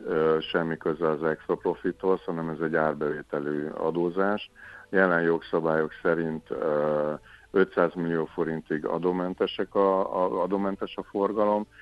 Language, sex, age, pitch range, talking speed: Hungarian, male, 50-69, 80-90 Hz, 105 wpm